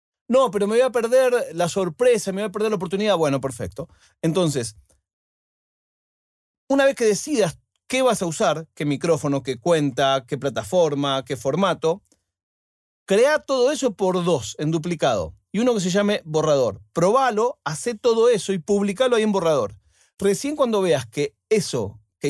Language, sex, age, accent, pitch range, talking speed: Spanish, male, 40-59, Argentinian, 130-210 Hz, 165 wpm